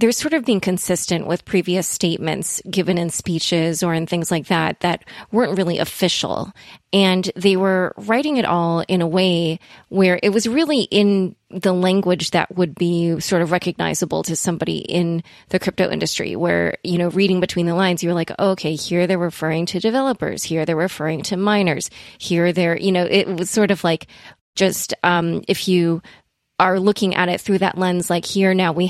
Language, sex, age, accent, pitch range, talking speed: English, female, 20-39, American, 170-190 Hz, 190 wpm